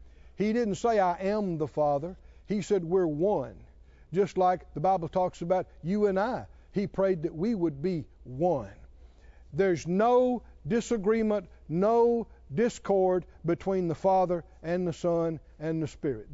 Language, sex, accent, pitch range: English, male, American, 145-215 Hz